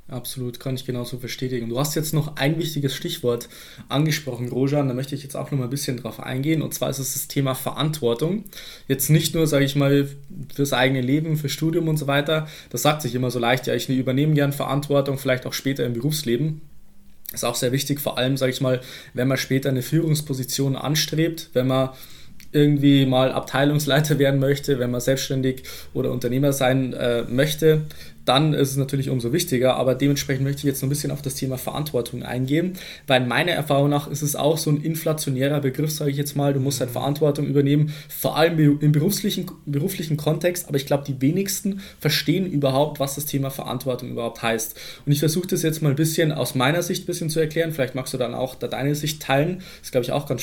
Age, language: 20-39, German